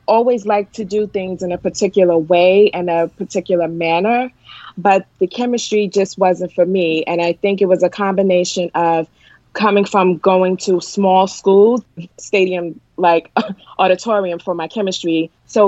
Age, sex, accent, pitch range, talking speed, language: 20-39, female, American, 170-195 Hz, 155 wpm, English